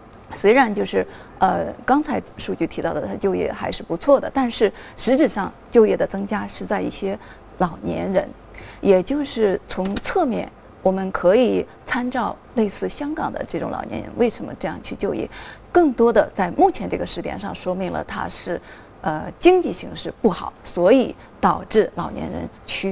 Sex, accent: female, native